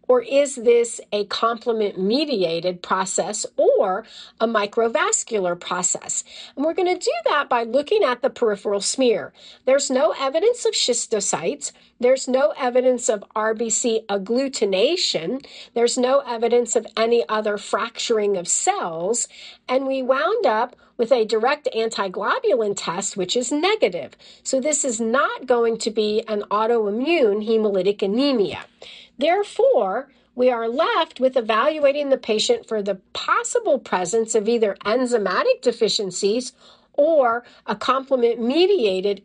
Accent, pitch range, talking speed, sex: American, 215-295 Hz, 130 wpm, female